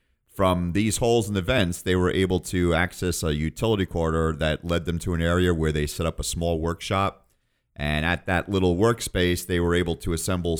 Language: English